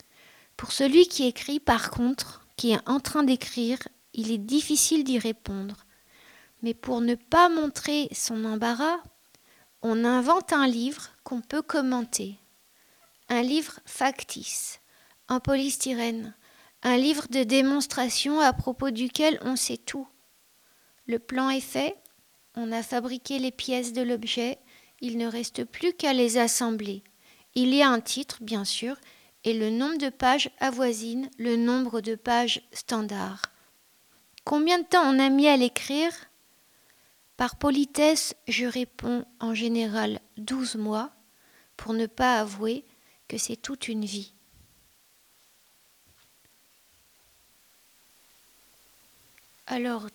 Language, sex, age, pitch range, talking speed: French, female, 50-69, 230-275 Hz, 130 wpm